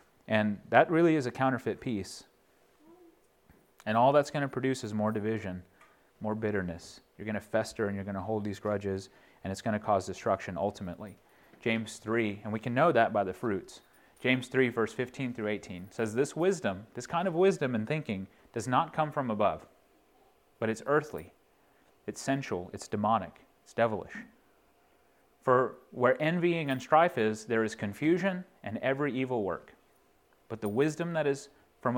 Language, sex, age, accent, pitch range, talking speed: English, male, 30-49, American, 105-140 Hz, 175 wpm